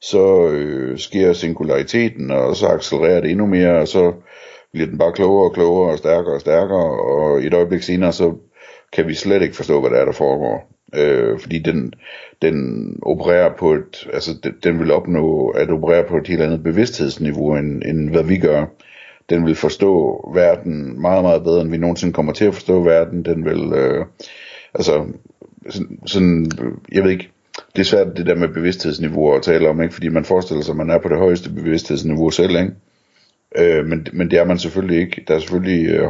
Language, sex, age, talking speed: Danish, male, 60-79, 195 wpm